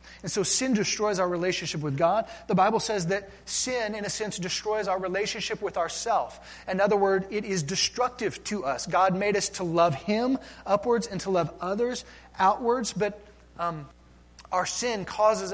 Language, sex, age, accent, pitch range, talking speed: English, male, 30-49, American, 130-215 Hz, 180 wpm